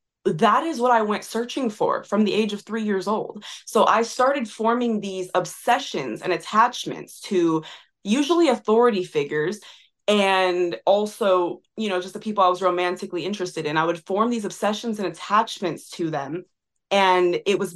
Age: 20-39